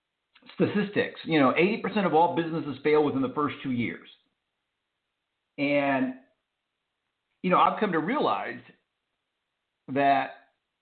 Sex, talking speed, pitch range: male, 115 wpm, 130-175 Hz